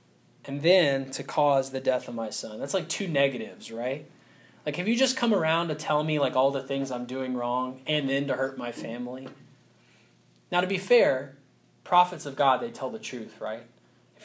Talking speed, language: 205 wpm, English